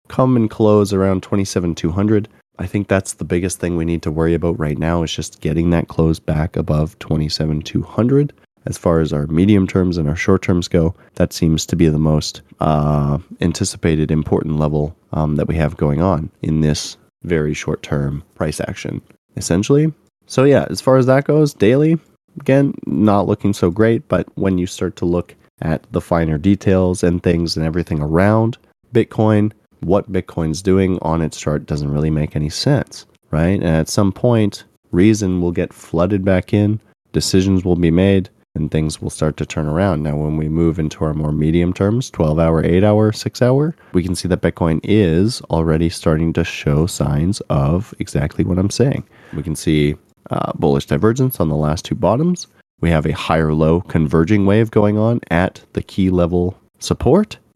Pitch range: 80-105 Hz